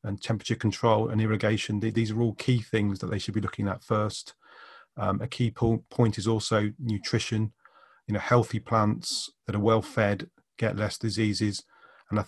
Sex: male